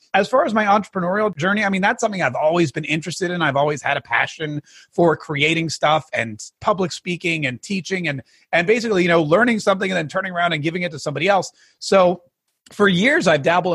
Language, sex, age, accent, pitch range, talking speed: English, male, 30-49, American, 150-190 Hz, 220 wpm